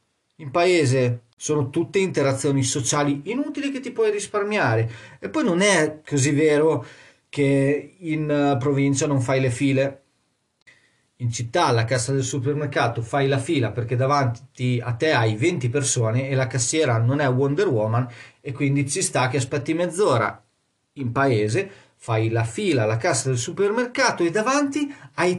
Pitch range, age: 125-165 Hz, 40-59